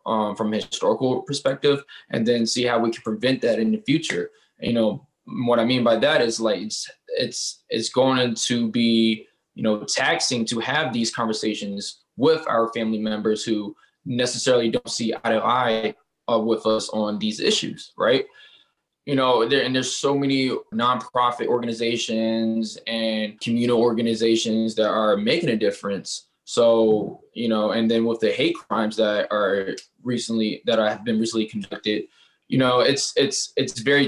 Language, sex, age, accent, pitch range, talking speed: English, male, 20-39, American, 110-130 Hz, 165 wpm